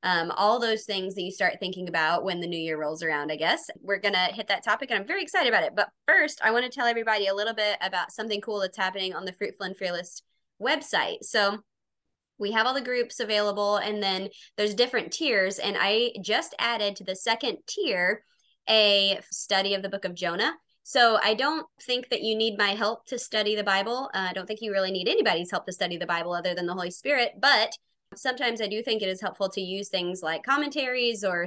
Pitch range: 180-220 Hz